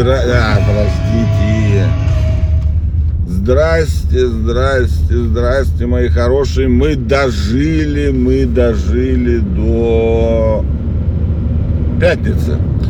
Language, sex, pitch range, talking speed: Russian, male, 80-115 Hz, 65 wpm